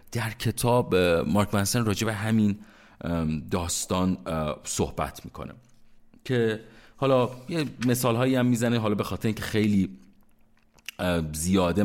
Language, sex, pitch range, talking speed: Persian, male, 85-125 Hz, 100 wpm